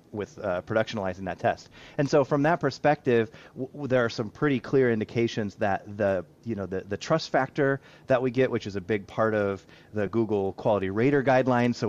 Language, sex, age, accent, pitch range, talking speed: English, male, 30-49, American, 105-130 Hz, 205 wpm